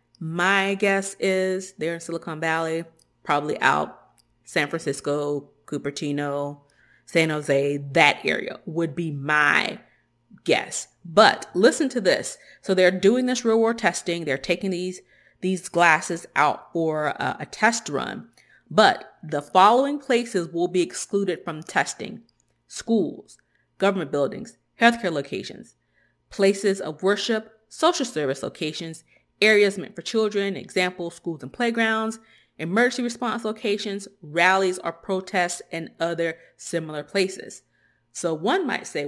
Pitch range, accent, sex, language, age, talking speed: 165-205 Hz, American, female, English, 30-49, 130 wpm